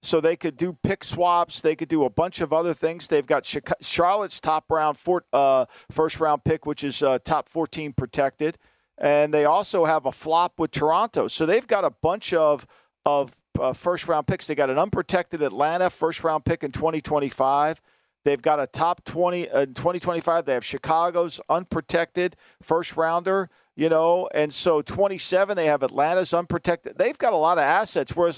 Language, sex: English, male